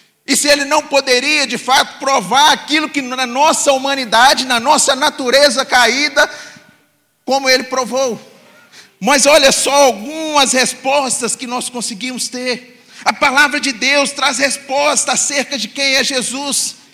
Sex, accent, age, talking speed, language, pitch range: male, Brazilian, 40-59, 140 wpm, Portuguese, 235-280 Hz